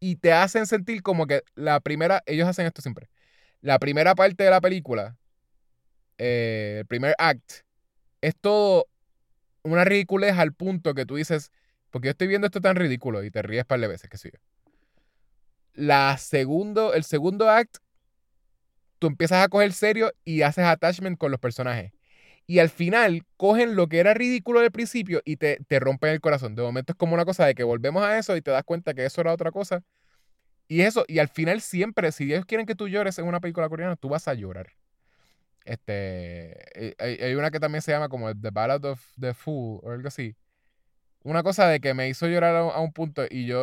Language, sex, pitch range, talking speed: Spanish, male, 125-175 Hz, 205 wpm